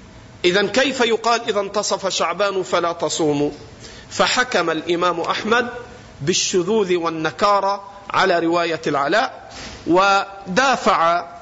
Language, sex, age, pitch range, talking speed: Arabic, male, 50-69, 140-215 Hz, 90 wpm